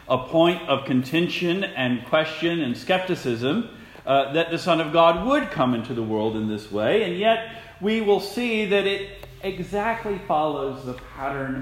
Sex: male